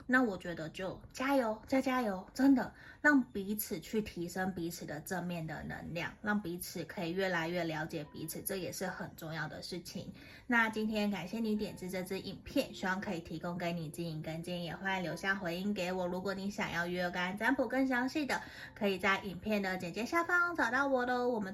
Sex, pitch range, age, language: female, 180-235 Hz, 20-39, Chinese